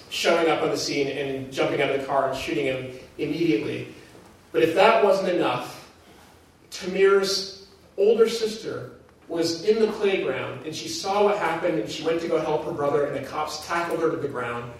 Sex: male